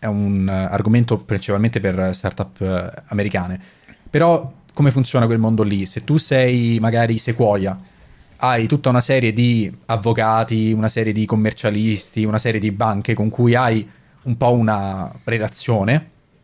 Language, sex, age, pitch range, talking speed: Italian, male, 30-49, 105-125 Hz, 140 wpm